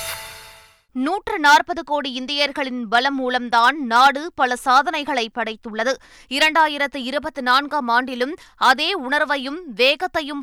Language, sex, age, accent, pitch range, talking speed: Tamil, female, 20-39, native, 250-305 Hz, 85 wpm